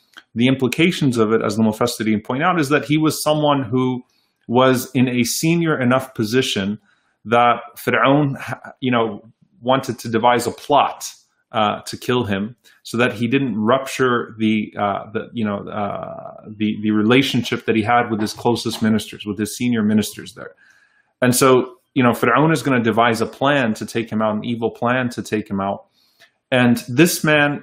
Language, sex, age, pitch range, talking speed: English, male, 30-49, 115-145 Hz, 180 wpm